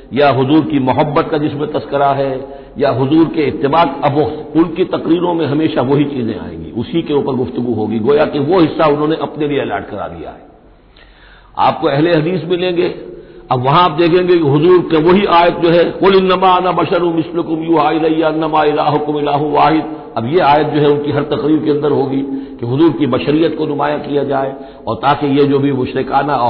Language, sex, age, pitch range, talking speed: Hindi, male, 60-79, 135-165 Hz, 190 wpm